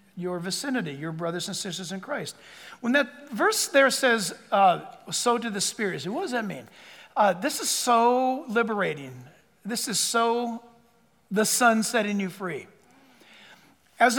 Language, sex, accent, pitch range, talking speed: English, male, American, 215-275 Hz, 150 wpm